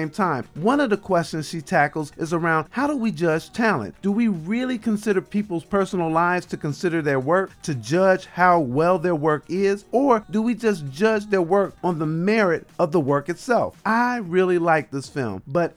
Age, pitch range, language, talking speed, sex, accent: 40-59, 150-200 Hz, English, 200 wpm, male, American